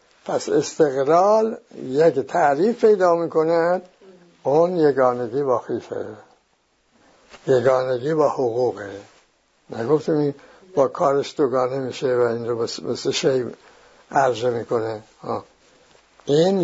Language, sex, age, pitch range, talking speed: English, male, 60-79, 130-180 Hz, 100 wpm